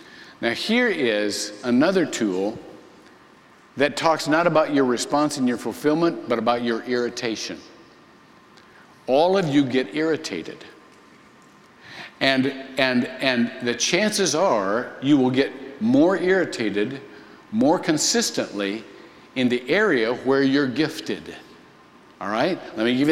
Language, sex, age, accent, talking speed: English, male, 50-69, American, 120 wpm